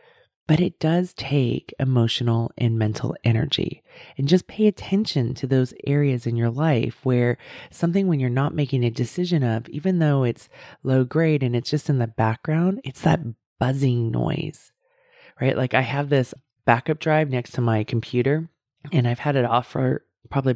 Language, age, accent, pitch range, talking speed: English, 30-49, American, 120-140 Hz, 175 wpm